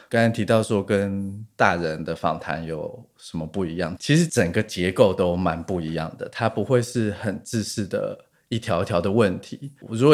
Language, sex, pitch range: Chinese, male, 95-125 Hz